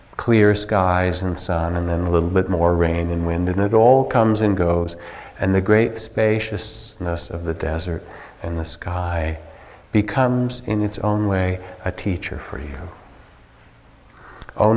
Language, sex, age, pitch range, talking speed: English, male, 50-69, 85-105 Hz, 160 wpm